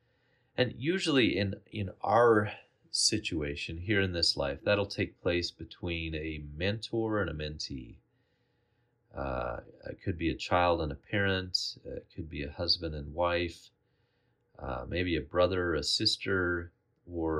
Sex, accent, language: male, American, English